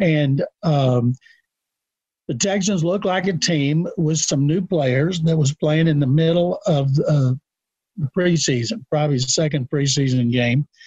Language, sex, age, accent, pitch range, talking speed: English, male, 50-69, American, 135-165 Hz, 150 wpm